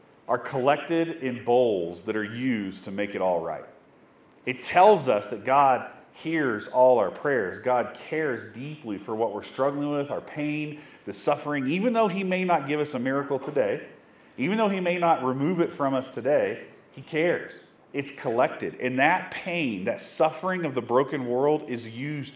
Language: English